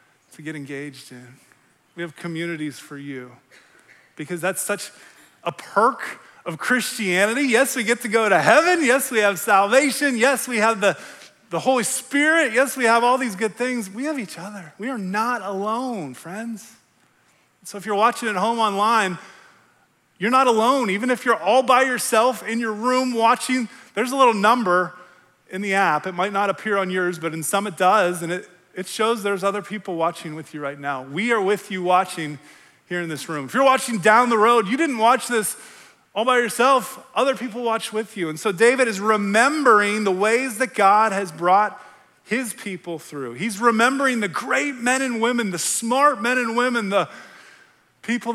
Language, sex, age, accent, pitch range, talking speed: English, male, 30-49, American, 185-245 Hz, 190 wpm